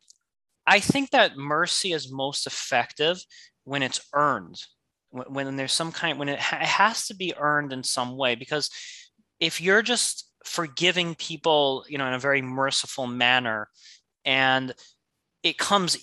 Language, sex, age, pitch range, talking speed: English, male, 30-49, 135-180 Hz, 155 wpm